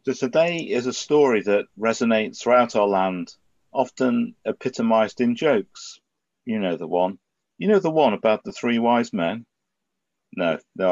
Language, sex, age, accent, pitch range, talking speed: English, male, 50-69, British, 105-160 Hz, 160 wpm